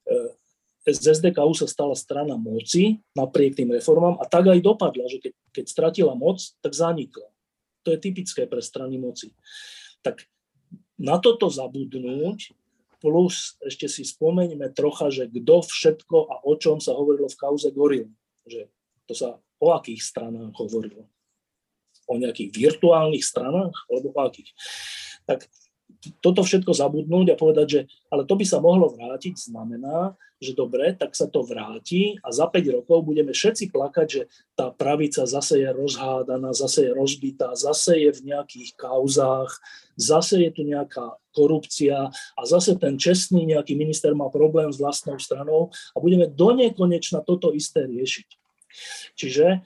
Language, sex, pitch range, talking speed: Slovak, male, 145-215 Hz, 150 wpm